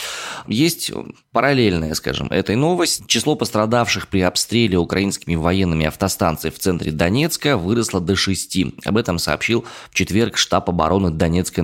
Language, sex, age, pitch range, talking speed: Russian, male, 20-39, 85-110 Hz, 135 wpm